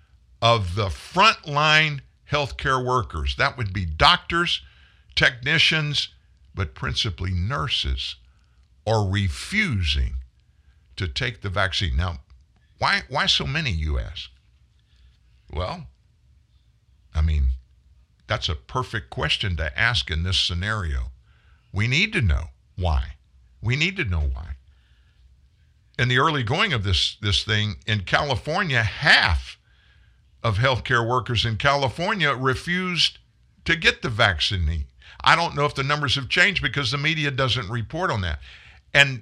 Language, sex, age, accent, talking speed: English, male, 50-69, American, 130 wpm